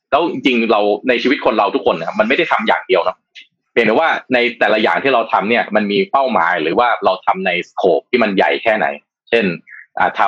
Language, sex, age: Thai, male, 20-39